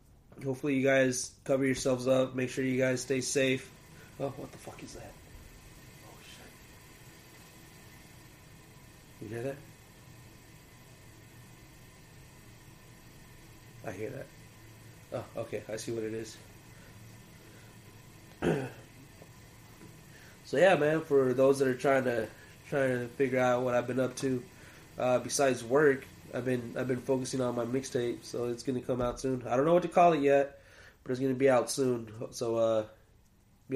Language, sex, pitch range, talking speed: English, male, 110-130 Hz, 150 wpm